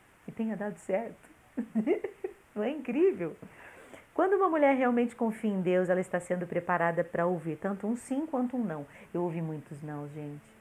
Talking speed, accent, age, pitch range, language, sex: 175 wpm, Brazilian, 40-59, 160-210 Hz, Portuguese, female